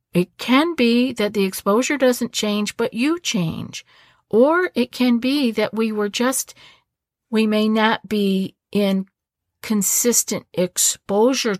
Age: 50-69